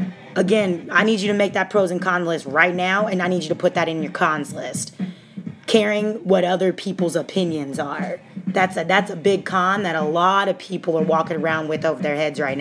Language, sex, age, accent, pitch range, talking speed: English, female, 30-49, American, 170-210 Hz, 235 wpm